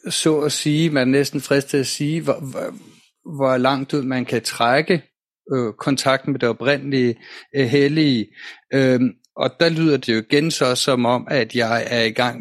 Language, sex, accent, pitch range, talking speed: Danish, male, native, 115-140 Hz, 185 wpm